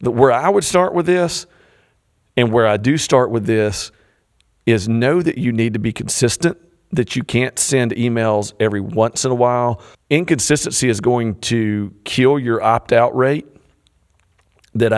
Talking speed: 165 wpm